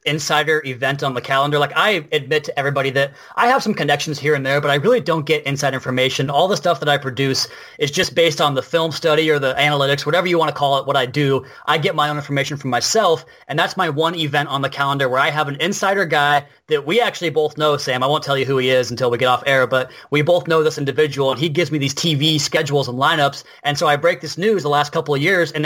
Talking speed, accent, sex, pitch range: 270 wpm, American, male, 135-165 Hz